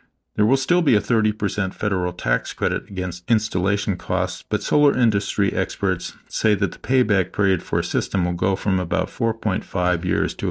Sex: male